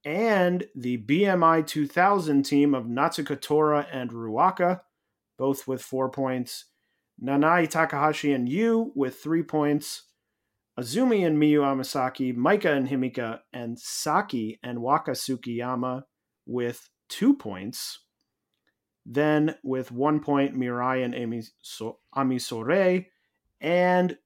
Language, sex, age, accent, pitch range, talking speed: English, male, 30-49, American, 120-160 Hz, 105 wpm